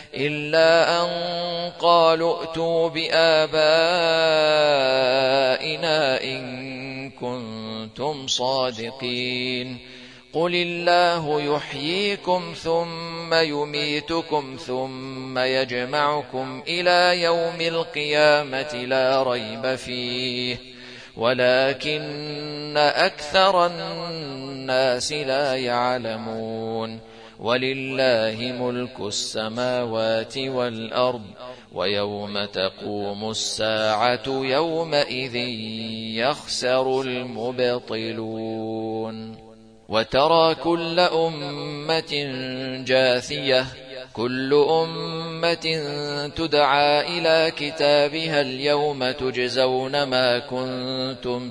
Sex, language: male, Arabic